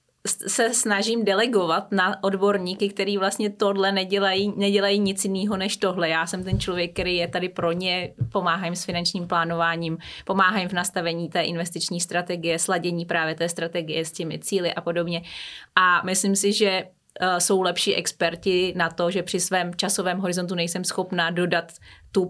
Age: 20-39